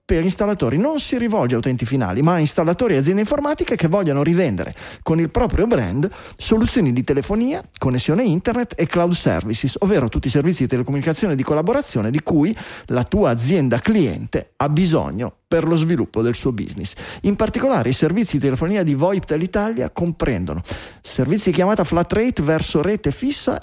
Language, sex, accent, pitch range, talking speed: Italian, male, native, 135-200 Hz, 180 wpm